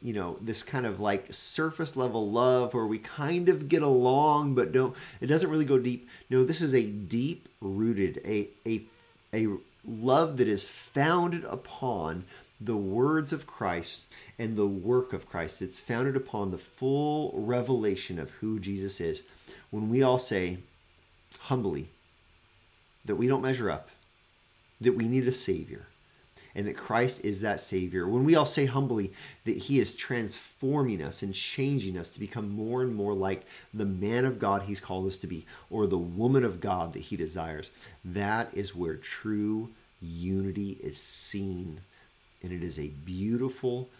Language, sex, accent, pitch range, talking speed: English, male, American, 95-125 Hz, 170 wpm